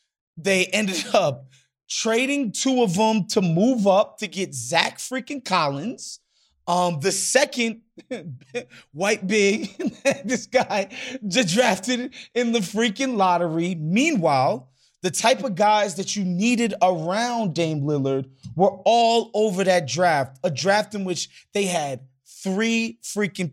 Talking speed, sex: 135 wpm, male